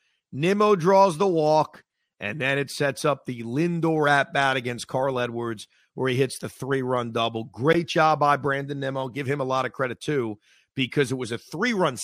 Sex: male